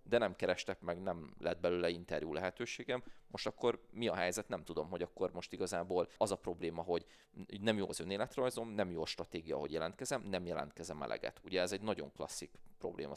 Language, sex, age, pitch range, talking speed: Hungarian, male, 30-49, 85-105 Hz, 195 wpm